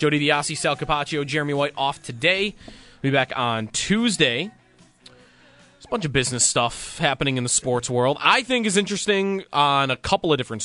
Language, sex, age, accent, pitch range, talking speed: English, male, 20-39, American, 125-165 Hz, 185 wpm